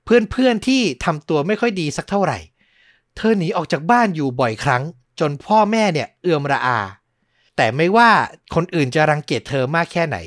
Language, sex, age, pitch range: Thai, male, 60-79, 120-175 Hz